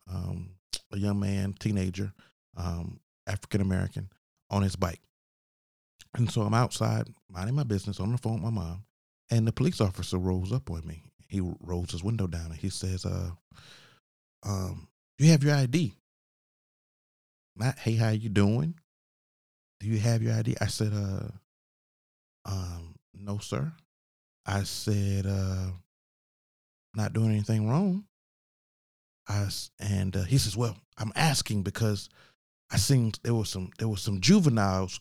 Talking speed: 150 wpm